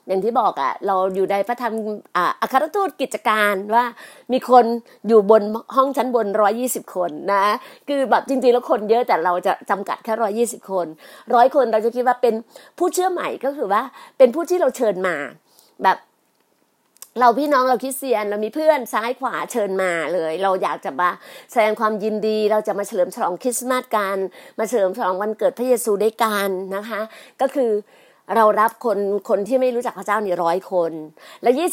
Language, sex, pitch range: Thai, female, 205-255 Hz